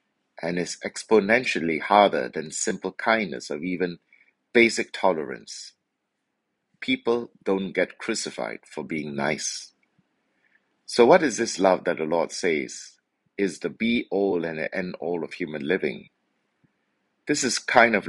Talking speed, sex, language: 130 wpm, male, English